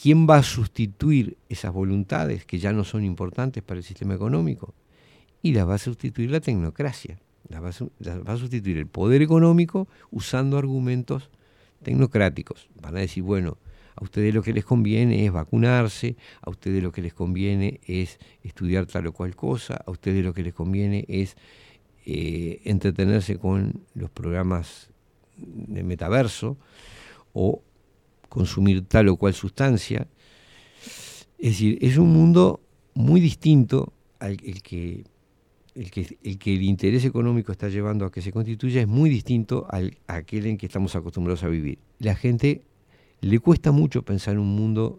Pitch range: 95-120 Hz